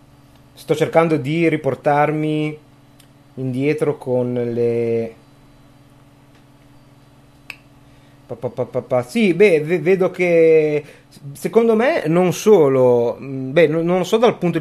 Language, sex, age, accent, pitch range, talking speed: Italian, male, 30-49, native, 125-145 Hz, 105 wpm